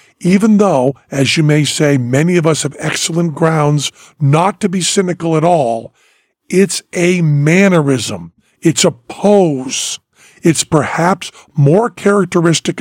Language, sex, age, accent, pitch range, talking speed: English, male, 50-69, American, 145-185 Hz, 130 wpm